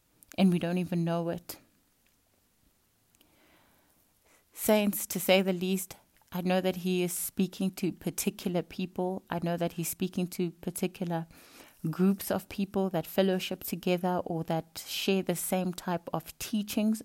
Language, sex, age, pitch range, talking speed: English, female, 30-49, 175-195 Hz, 145 wpm